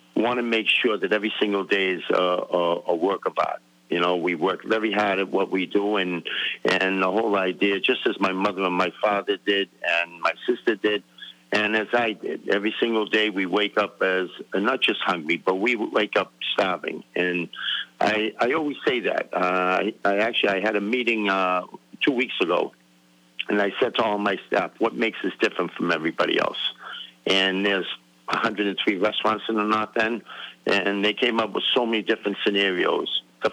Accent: American